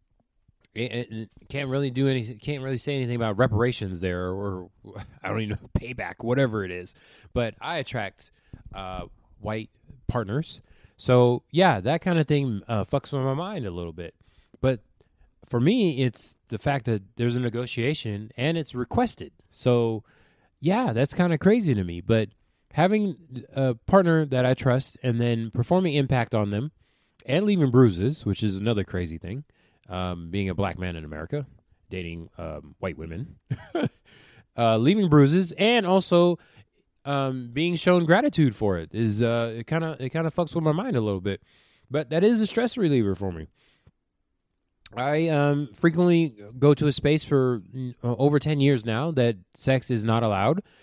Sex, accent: male, American